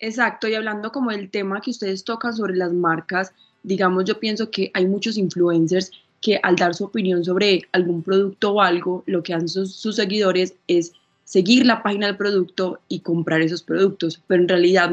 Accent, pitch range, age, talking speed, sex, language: Colombian, 170-205 Hz, 20-39, 195 wpm, female, Spanish